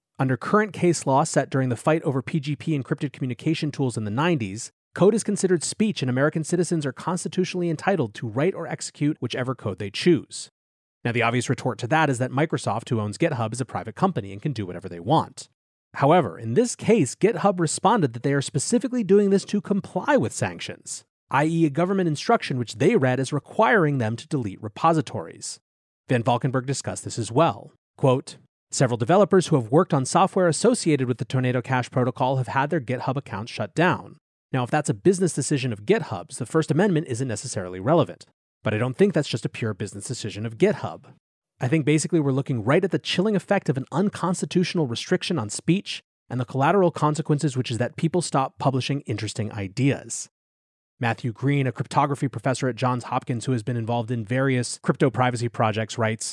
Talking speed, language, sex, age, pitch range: 195 wpm, English, male, 30-49, 120-165 Hz